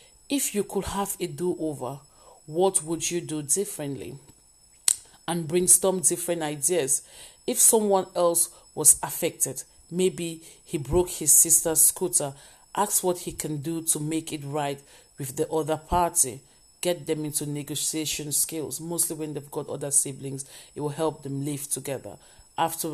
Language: English